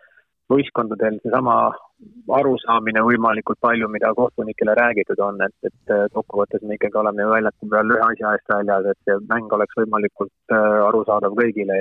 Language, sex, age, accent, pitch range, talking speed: English, male, 20-39, Finnish, 105-115 Hz, 130 wpm